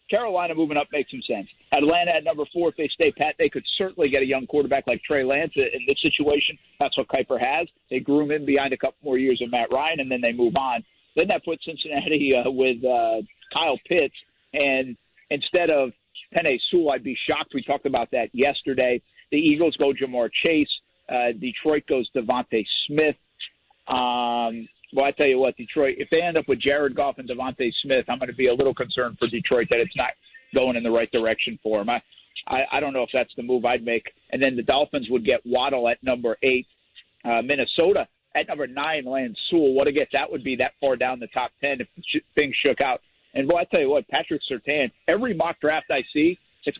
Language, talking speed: English, 225 wpm